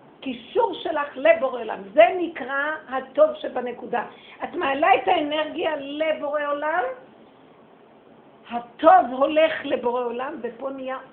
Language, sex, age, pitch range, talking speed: Hebrew, female, 50-69, 220-290 Hz, 110 wpm